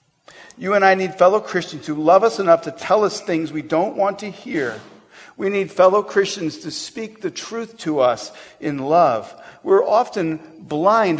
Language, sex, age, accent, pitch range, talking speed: English, male, 50-69, American, 135-195 Hz, 180 wpm